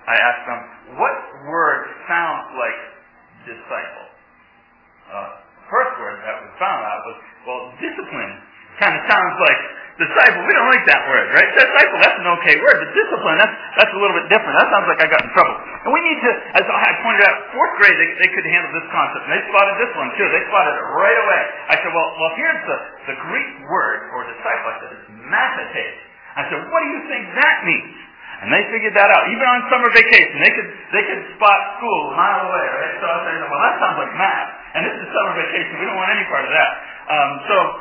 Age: 40-59